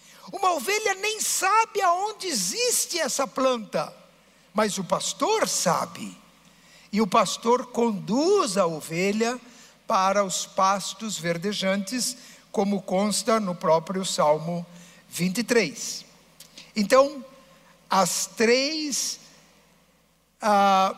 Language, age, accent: Portuguese, 60-79, Brazilian